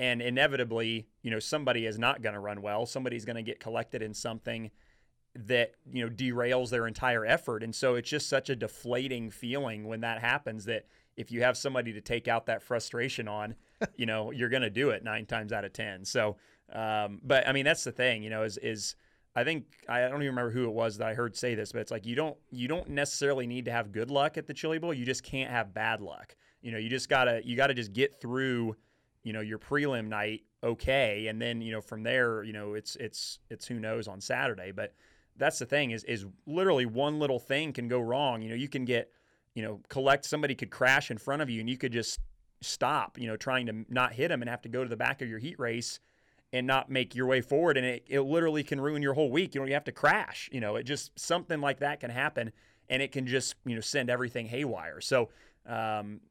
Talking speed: 245 wpm